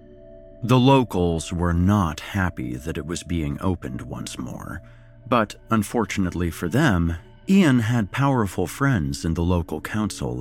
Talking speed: 140 wpm